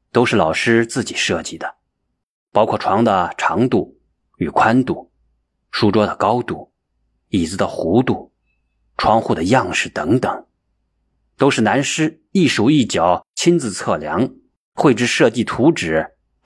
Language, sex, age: Chinese, male, 30-49